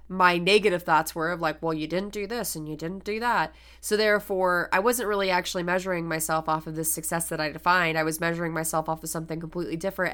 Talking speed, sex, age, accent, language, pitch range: 235 wpm, female, 20-39, American, English, 165-190 Hz